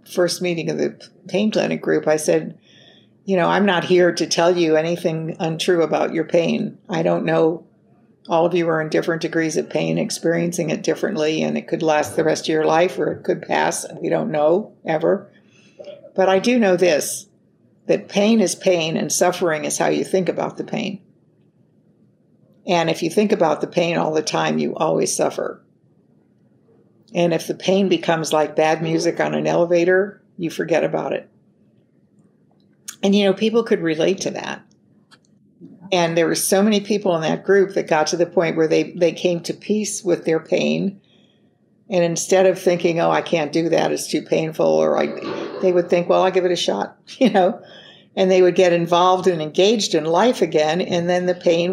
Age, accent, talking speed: 60-79, American, 195 wpm